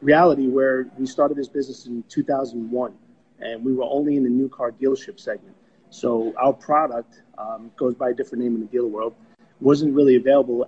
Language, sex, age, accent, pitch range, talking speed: English, male, 30-49, American, 115-135 Hz, 190 wpm